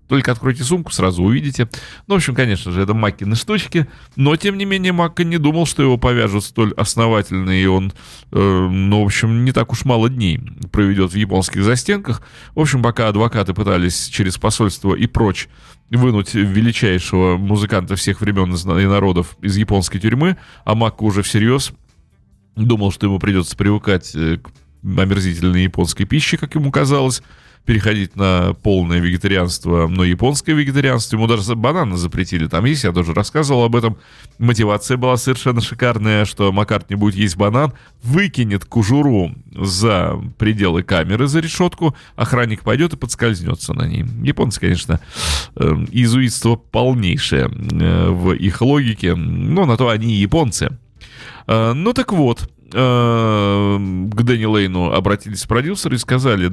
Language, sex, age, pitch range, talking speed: Russian, male, 30-49, 95-130 Hz, 150 wpm